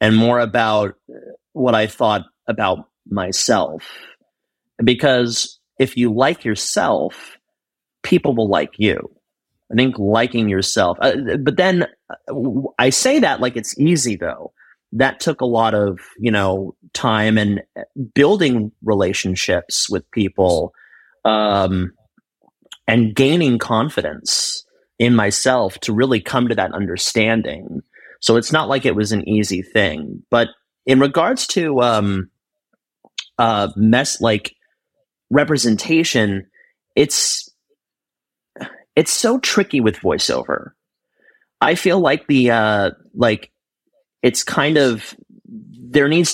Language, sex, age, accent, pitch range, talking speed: English, male, 30-49, American, 105-155 Hz, 120 wpm